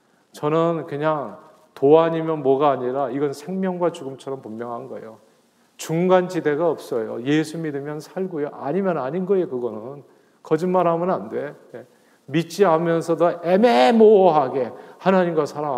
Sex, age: male, 40-59